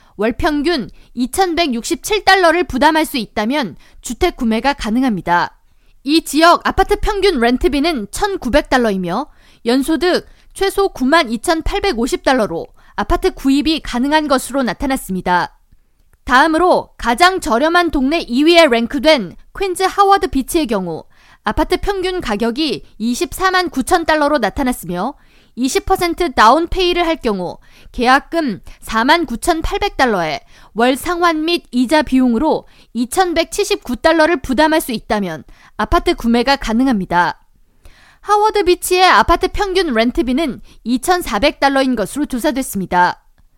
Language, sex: Korean, female